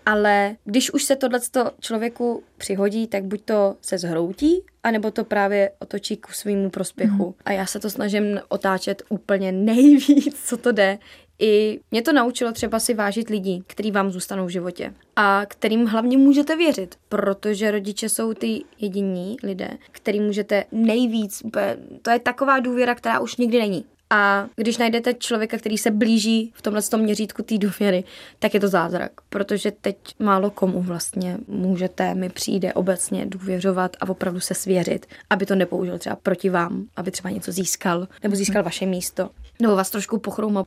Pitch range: 195-225 Hz